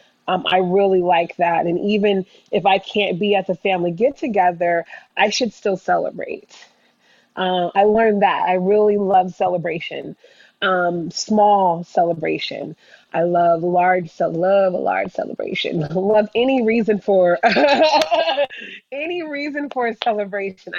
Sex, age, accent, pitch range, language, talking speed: female, 20-39, American, 175-210 Hz, English, 140 wpm